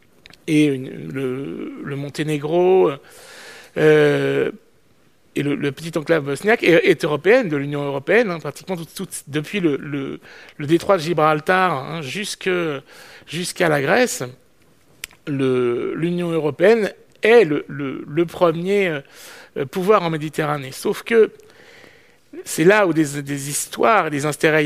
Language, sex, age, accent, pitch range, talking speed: German, male, 60-79, French, 145-175 Hz, 130 wpm